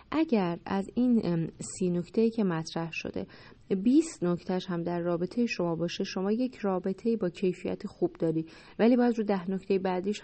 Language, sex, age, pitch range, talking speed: Persian, female, 30-49, 170-205 Hz, 165 wpm